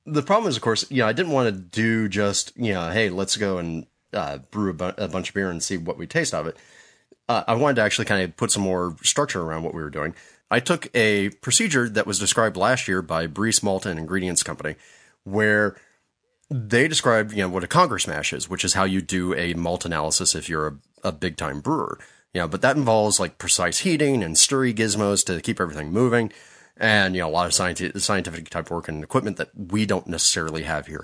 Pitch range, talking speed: 90-110 Hz, 235 wpm